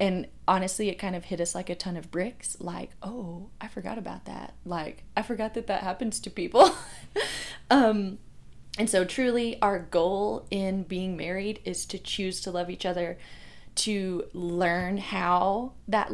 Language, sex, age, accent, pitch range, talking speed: English, female, 20-39, American, 180-225 Hz, 170 wpm